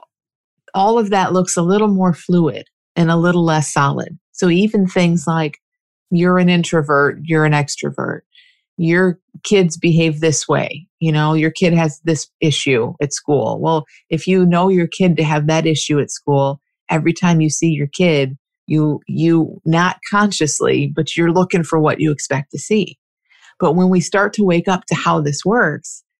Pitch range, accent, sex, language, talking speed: 155-190 Hz, American, female, English, 180 wpm